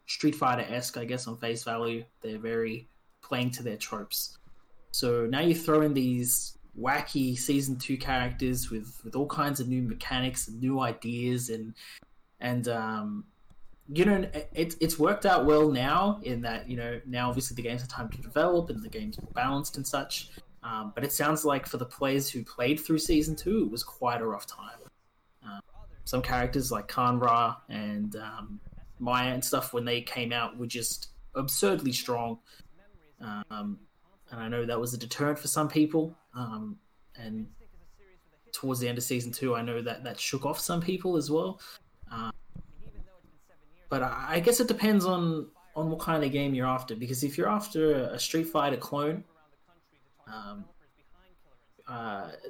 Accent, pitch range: Australian, 120-155 Hz